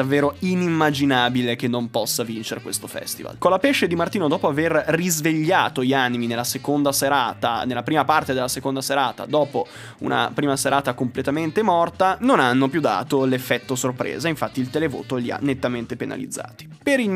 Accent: native